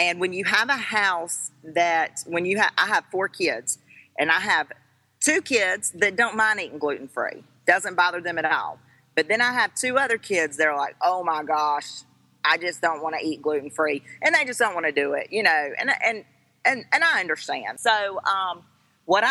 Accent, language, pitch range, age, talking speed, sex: American, English, 160-220 Hz, 40-59, 220 wpm, female